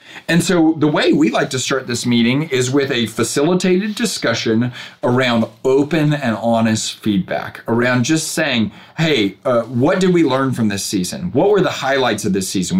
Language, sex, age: English, male, 40-59